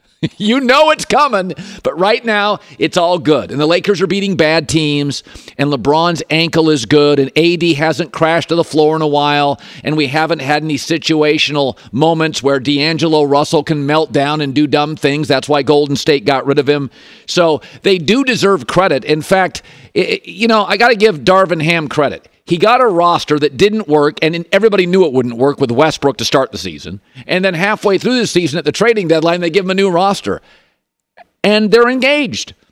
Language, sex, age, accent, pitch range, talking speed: English, male, 50-69, American, 150-200 Hz, 205 wpm